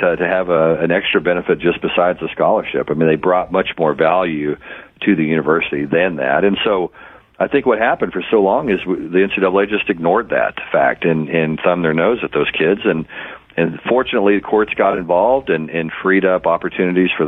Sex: male